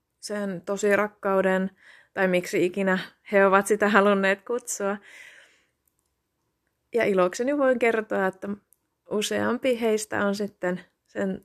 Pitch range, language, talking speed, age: 175-200 Hz, Finnish, 110 wpm, 20-39